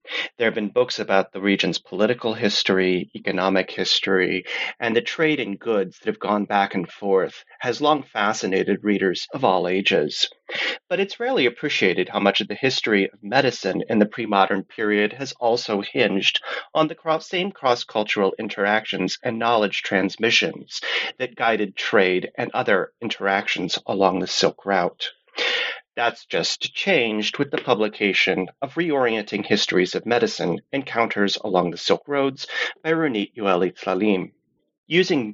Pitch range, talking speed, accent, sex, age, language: 100-140 Hz, 145 wpm, American, male, 30-49, English